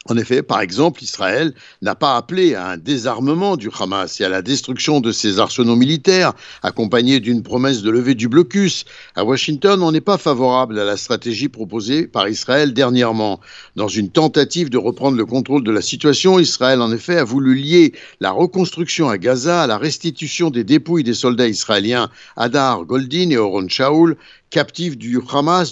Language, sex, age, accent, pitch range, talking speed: Italian, male, 60-79, French, 120-165 Hz, 180 wpm